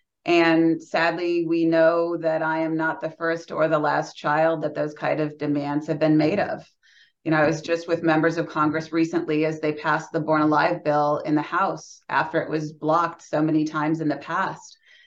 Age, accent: 30-49, American